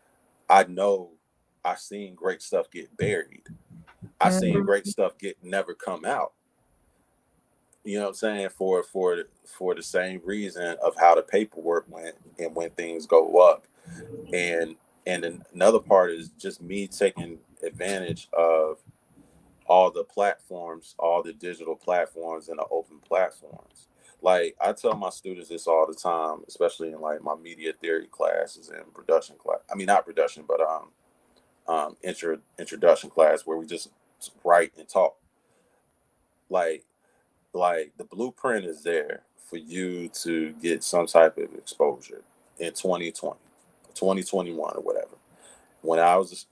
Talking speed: 145 wpm